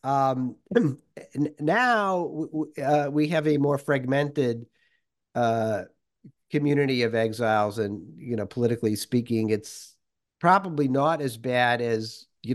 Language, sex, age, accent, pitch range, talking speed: English, male, 50-69, American, 110-135 Hz, 115 wpm